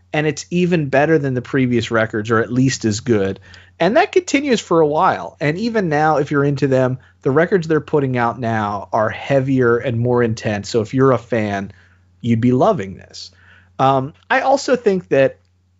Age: 30-49